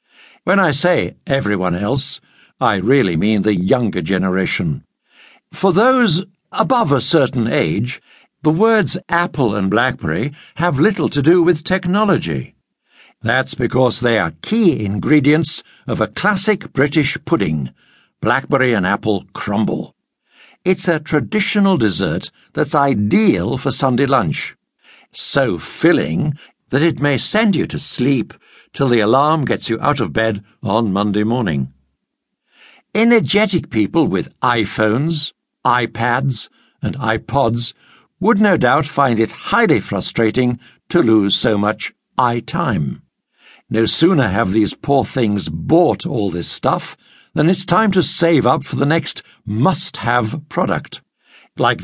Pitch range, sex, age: 110-170 Hz, male, 60-79